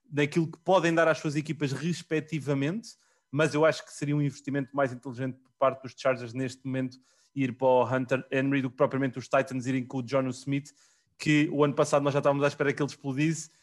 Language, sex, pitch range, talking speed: English, male, 130-155 Hz, 220 wpm